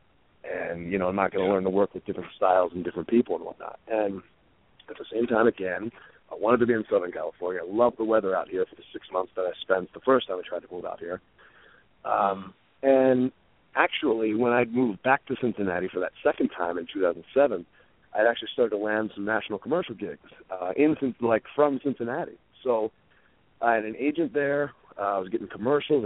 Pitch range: 100-130 Hz